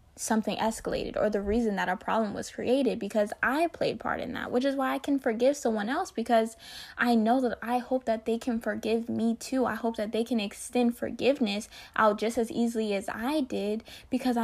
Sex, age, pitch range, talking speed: female, 10-29, 205-245 Hz, 210 wpm